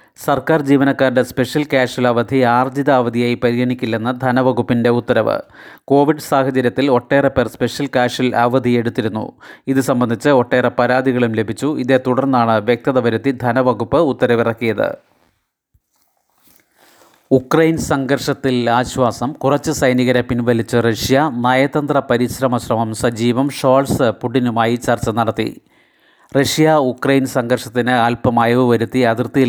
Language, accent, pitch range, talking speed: Malayalam, native, 120-135 Hz, 95 wpm